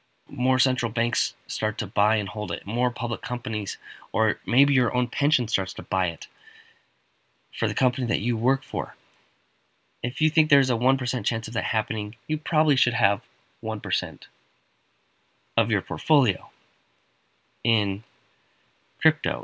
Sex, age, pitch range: male, 20-39, 105-135 Hz